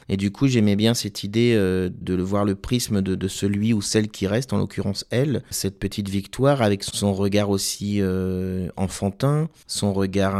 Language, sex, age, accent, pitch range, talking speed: French, male, 30-49, French, 100-110 Hz, 190 wpm